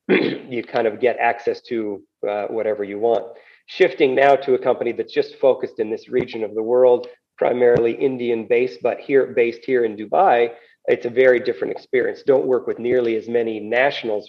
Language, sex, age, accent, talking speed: English, male, 40-59, American, 190 wpm